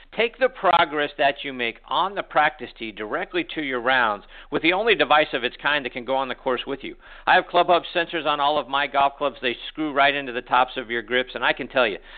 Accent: American